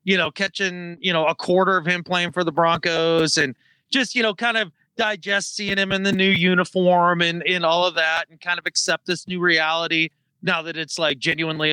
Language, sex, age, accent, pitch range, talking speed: English, male, 30-49, American, 155-195 Hz, 220 wpm